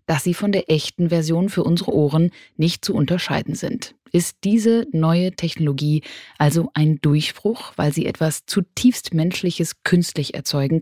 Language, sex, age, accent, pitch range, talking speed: German, female, 30-49, German, 145-190 Hz, 150 wpm